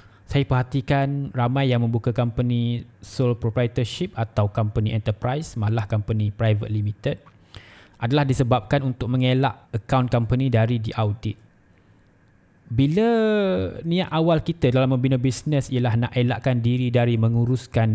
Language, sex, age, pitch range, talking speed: Malay, male, 20-39, 110-135 Hz, 120 wpm